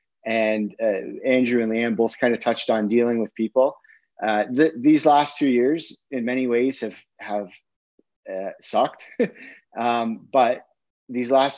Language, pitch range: English, 110-125 Hz